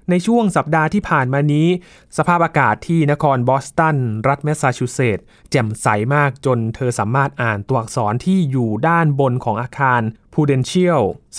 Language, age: Thai, 20-39